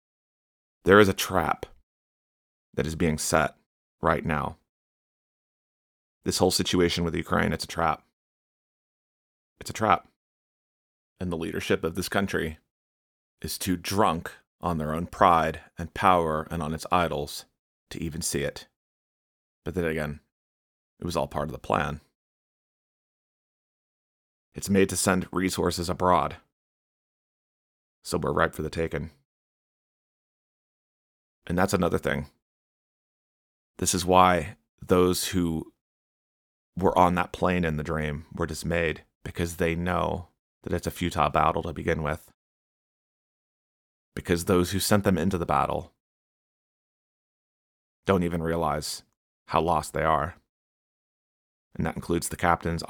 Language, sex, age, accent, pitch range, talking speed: English, male, 30-49, American, 75-90 Hz, 130 wpm